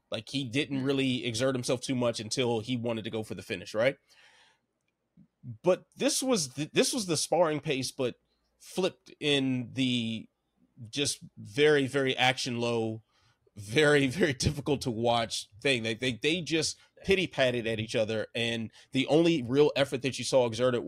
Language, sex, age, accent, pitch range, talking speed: English, male, 30-49, American, 115-150 Hz, 170 wpm